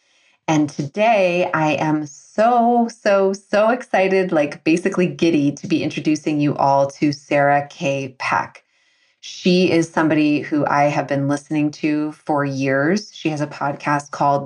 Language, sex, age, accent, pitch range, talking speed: English, female, 30-49, American, 140-165 Hz, 150 wpm